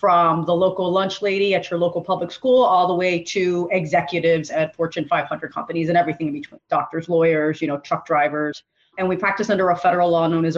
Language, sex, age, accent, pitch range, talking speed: English, female, 30-49, American, 165-190 Hz, 215 wpm